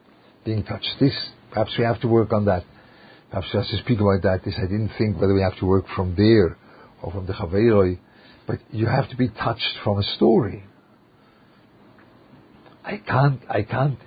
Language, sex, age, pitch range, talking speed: English, male, 50-69, 95-115 Hz, 190 wpm